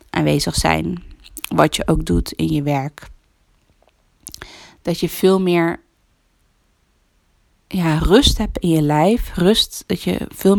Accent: Dutch